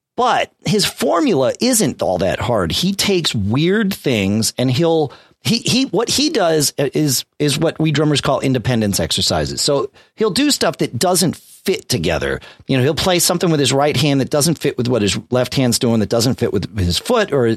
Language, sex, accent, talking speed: English, male, American, 200 wpm